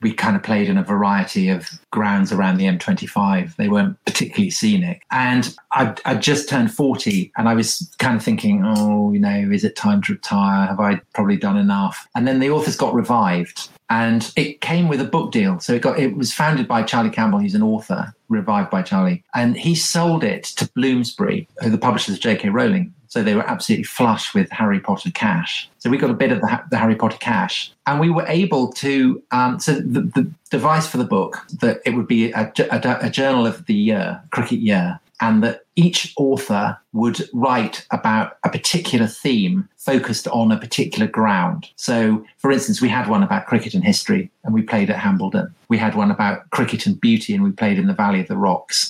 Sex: male